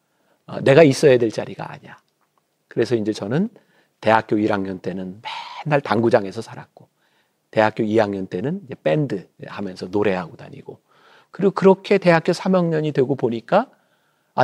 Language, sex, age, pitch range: Korean, male, 40-59, 115-190 Hz